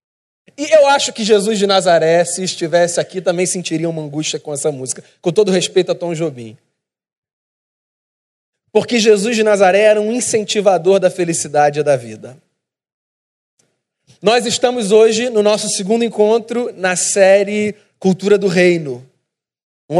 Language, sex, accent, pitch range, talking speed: Portuguese, male, Brazilian, 175-215 Hz, 145 wpm